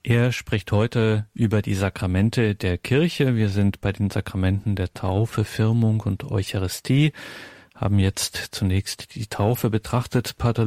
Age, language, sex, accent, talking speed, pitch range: 40-59, German, male, German, 140 wpm, 115-130 Hz